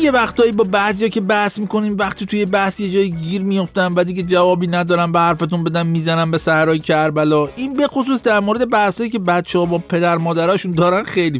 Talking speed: 200 wpm